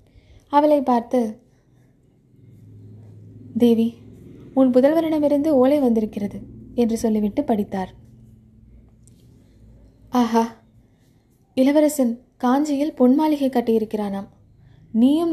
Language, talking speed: Tamil, 65 wpm